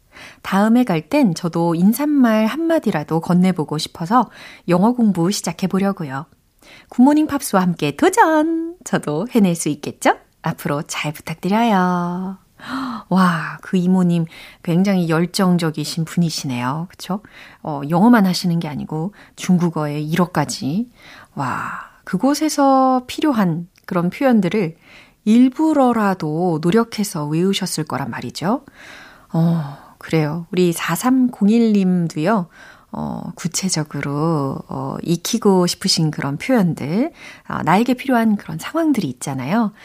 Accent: native